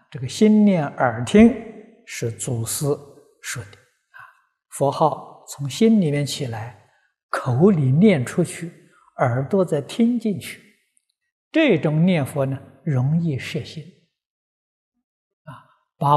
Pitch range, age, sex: 135-215 Hz, 60-79, male